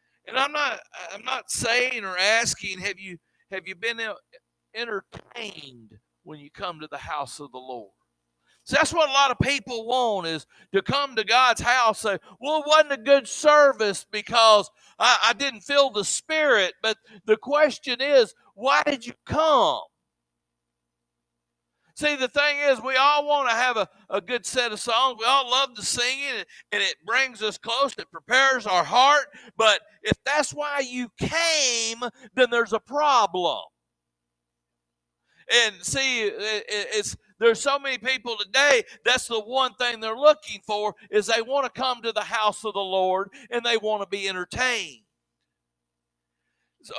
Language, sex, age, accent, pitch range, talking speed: English, male, 50-69, American, 190-270 Hz, 170 wpm